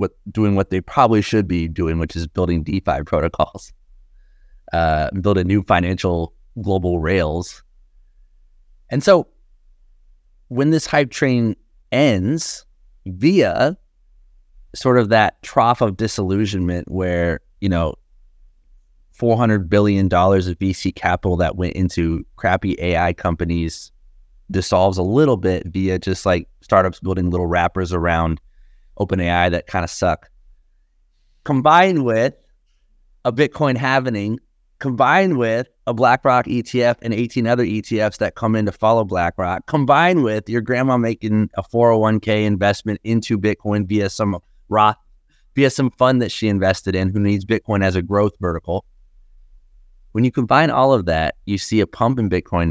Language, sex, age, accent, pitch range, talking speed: English, male, 30-49, American, 85-110 Hz, 145 wpm